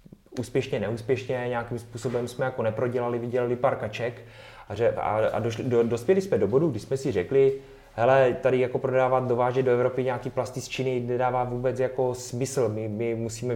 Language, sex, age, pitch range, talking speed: Czech, male, 20-39, 110-130 Hz, 175 wpm